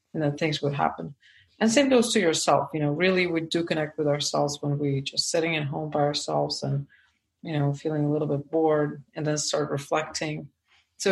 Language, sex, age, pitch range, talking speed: English, female, 40-59, 145-180 Hz, 210 wpm